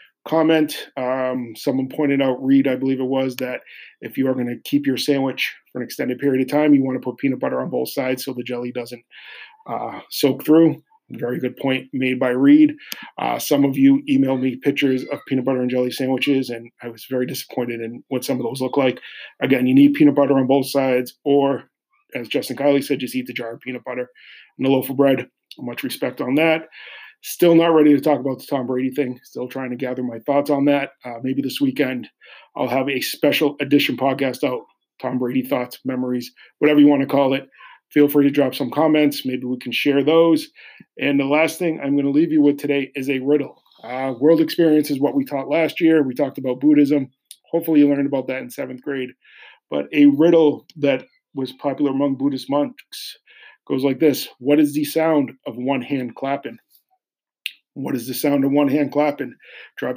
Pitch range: 130-150 Hz